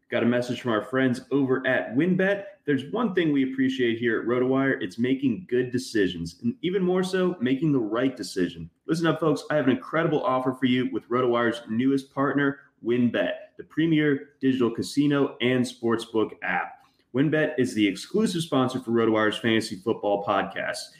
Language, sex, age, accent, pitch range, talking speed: English, male, 30-49, American, 120-150 Hz, 175 wpm